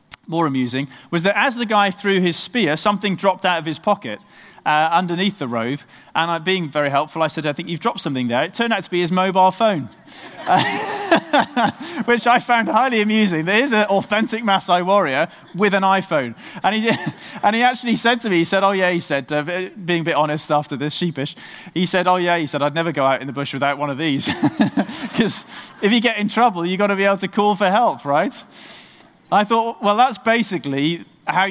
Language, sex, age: English, male, 30-49